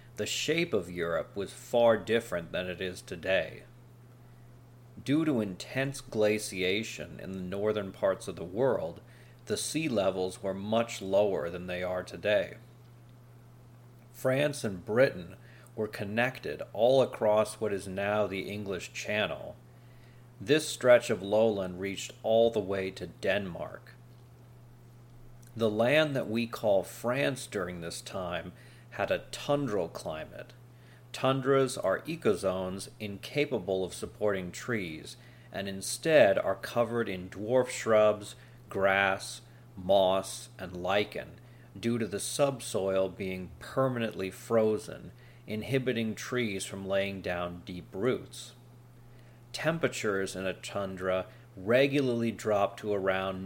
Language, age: English, 40-59